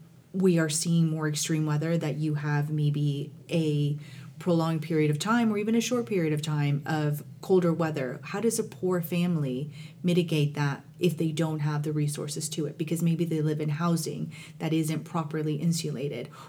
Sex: female